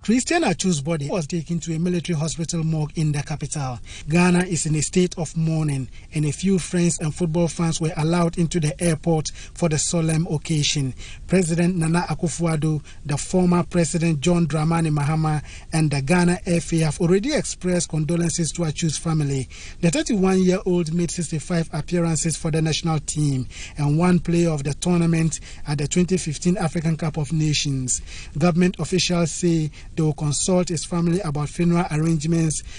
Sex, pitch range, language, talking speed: male, 150-175 Hz, English, 165 wpm